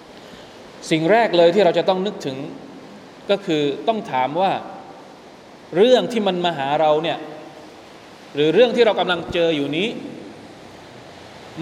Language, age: Thai, 20-39